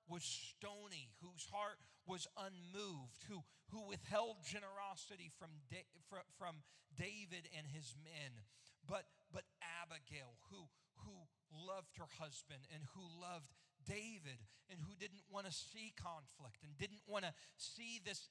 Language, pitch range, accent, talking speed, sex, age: English, 145-205 Hz, American, 140 wpm, male, 40-59